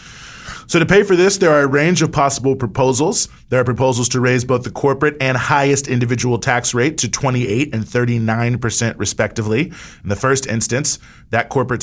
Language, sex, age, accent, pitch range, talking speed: English, male, 30-49, American, 105-130 Hz, 185 wpm